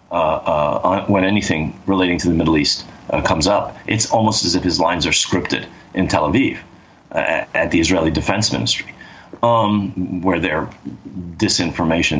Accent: American